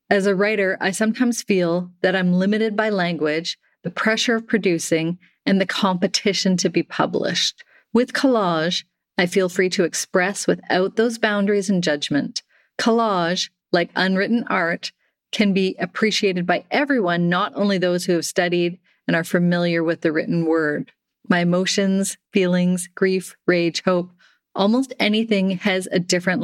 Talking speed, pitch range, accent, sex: 150 wpm, 170-205 Hz, American, female